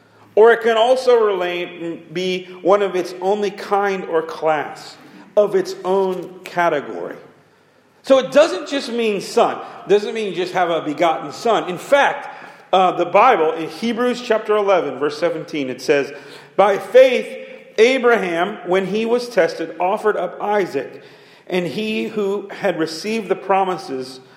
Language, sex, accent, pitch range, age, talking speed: English, male, American, 165-220 Hz, 40-59, 155 wpm